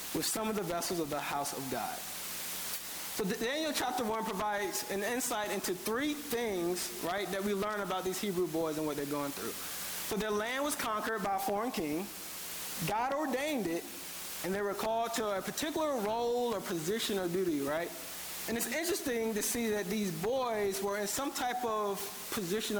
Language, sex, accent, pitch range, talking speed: English, male, American, 185-235 Hz, 190 wpm